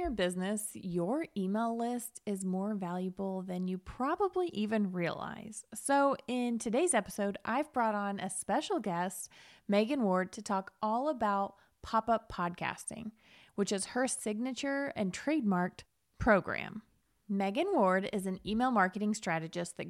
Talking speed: 140 wpm